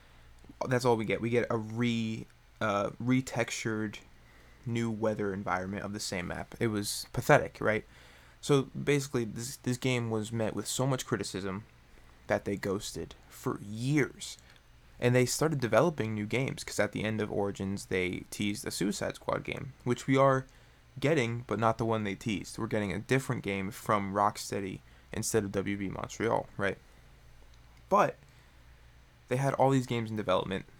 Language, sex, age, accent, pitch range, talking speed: English, male, 20-39, American, 100-125 Hz, 165 wpm